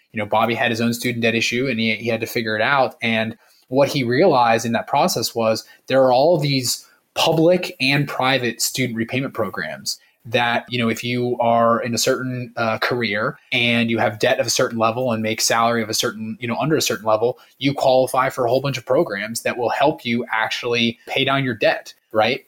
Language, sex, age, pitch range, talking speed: English, male, 20-39, 115-130 Hz, 225 wpm